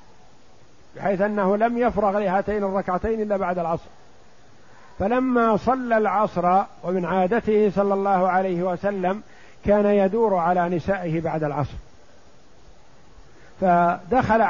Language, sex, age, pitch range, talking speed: Arabic, male, 50-69, 175-210 Hz, 105 wpm